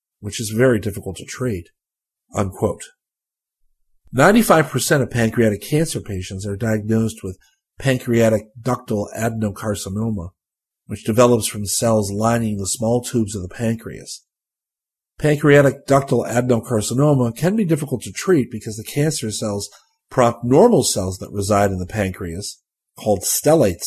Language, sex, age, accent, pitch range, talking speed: English, male, 50-69, American, 105-140 Hz, 130 wpm